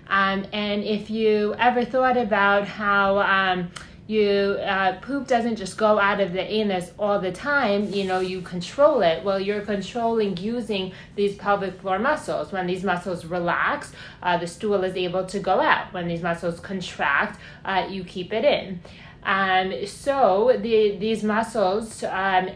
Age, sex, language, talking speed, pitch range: 30-49, female, English, 170 wpm, 185-210 Hz